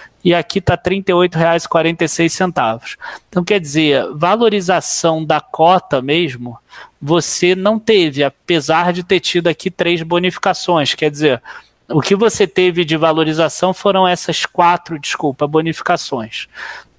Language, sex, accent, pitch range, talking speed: Portuguese, male, Brazilian, 150-185 Hz, 125 wpm